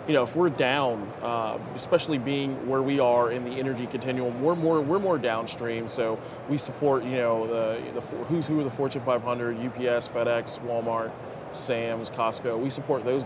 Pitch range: 120-140 Hz